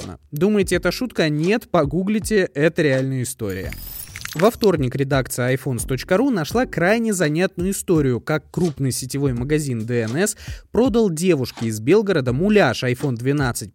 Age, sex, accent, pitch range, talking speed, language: 20-39, male, native, 130-195 Hz, 120 wpm, Russian